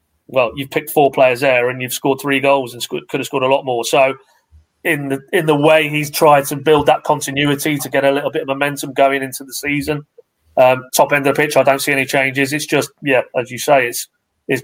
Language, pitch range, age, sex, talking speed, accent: English, 130-145 Hz, 30-49, male, 250 wpm, British